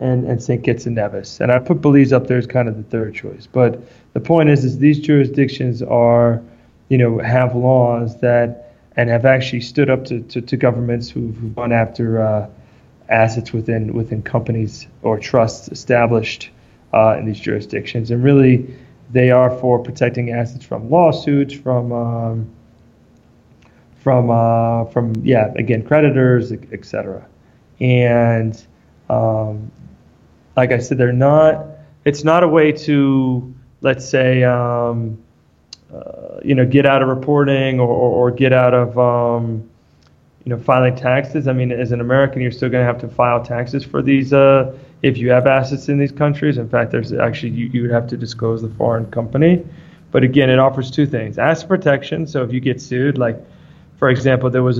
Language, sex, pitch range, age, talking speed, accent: English, male, 120-135 Hz, 20-39, 175 wpm, American